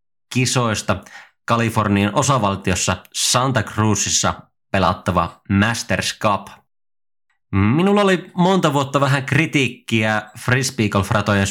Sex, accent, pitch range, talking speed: male, native, 100-135 Hz, 80 wpm